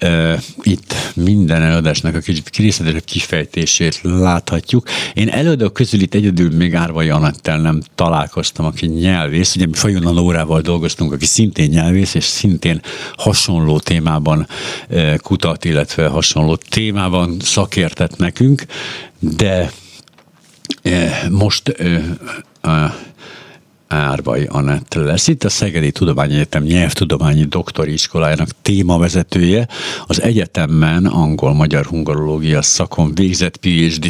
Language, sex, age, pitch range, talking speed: Hungarian, male, 60-79, 80-95 Hz, 100 wpm